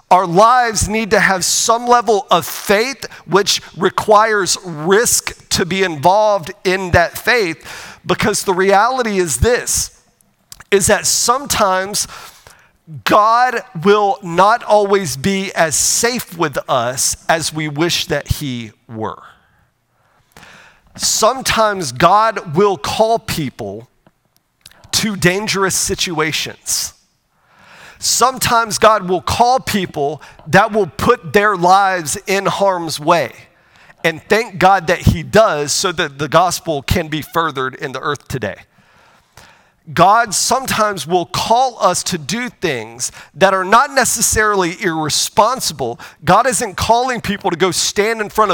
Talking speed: 125 wpm